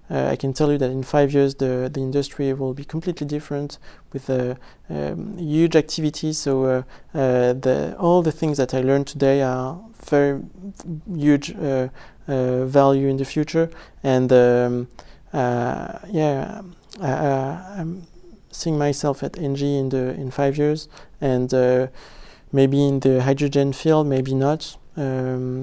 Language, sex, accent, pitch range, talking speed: French, male, French, 130-150 Hz, 160 wpm